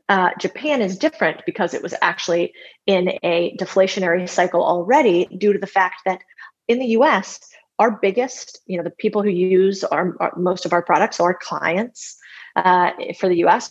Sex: female